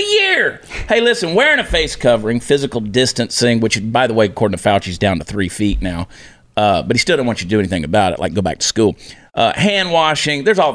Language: English